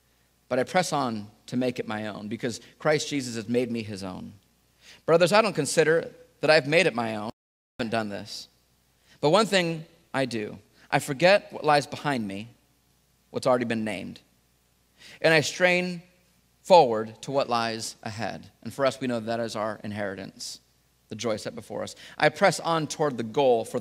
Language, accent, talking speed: English, American, 190 wpm